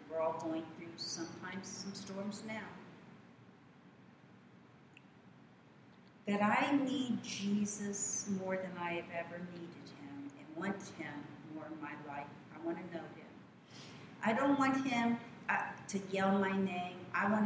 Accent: American